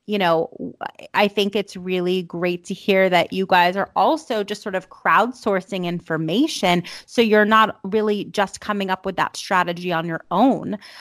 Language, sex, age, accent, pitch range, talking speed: English, female, 30-49, American, 180-230 Hz, 175 wpm